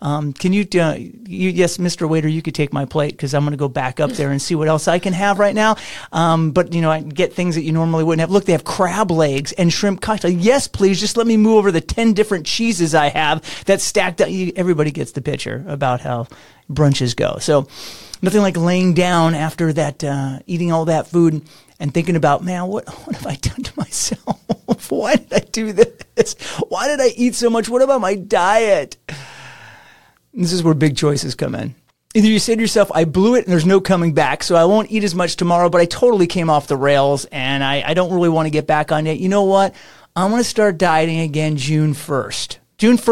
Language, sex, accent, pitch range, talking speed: English, male, American, 155-195 Hz, 240 wpm